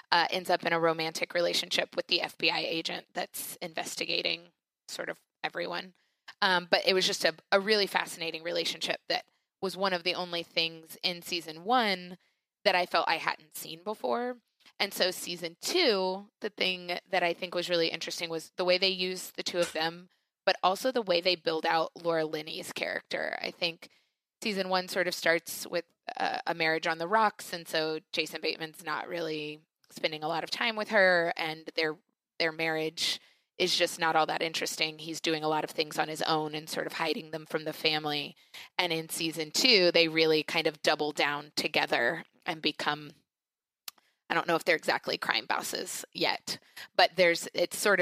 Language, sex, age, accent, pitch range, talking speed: English, female, 20-39, American, 160-185 Hz, 190 wpm